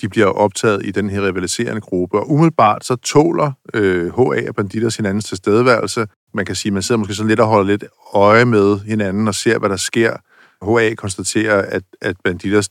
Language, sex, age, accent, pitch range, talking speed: Danish, male, 50-69, native, 95-110 Hz, 205 wpm